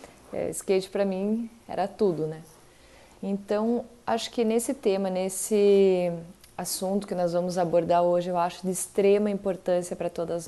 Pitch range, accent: 180-225 Hz, Brazilian